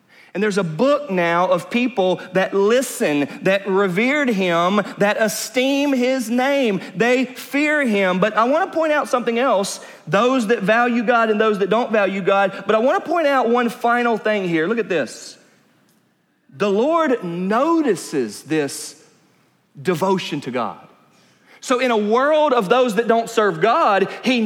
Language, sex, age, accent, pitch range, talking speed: English, male, 40-59, American, 185-240 Hz, 165 wpm